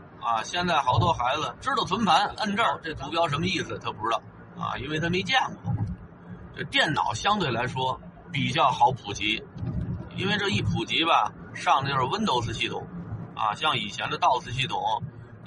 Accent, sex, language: native, male, Chinese